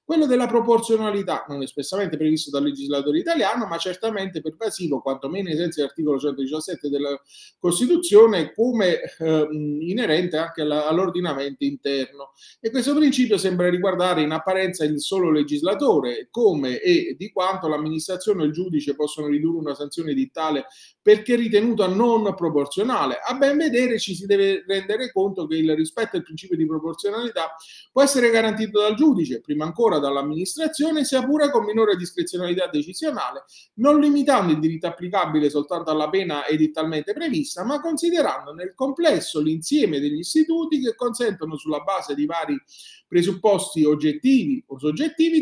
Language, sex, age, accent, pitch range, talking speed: Italian, male, 30-49, native, 155-245 Hz, 145 wpm